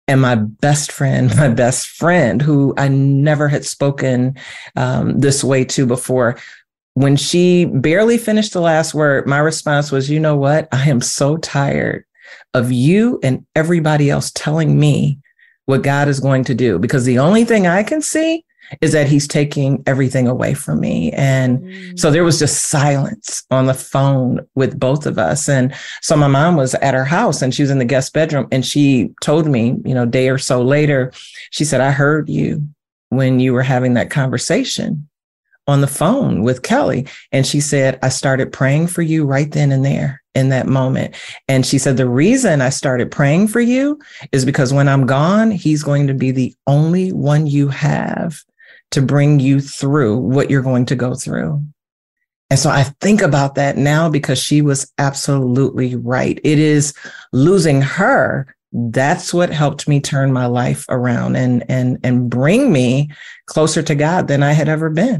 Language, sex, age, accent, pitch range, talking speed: English, male, 40-59, American, 130-155 Hz, 185 wpm